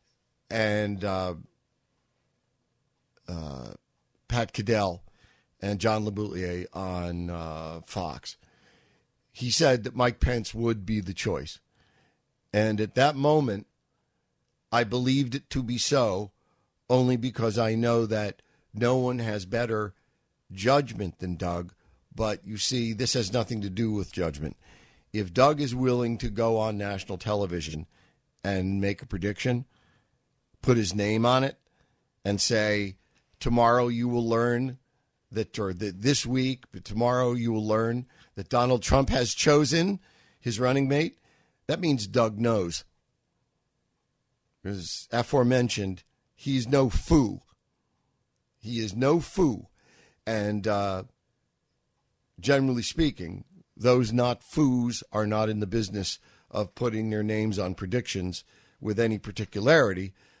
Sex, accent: male, American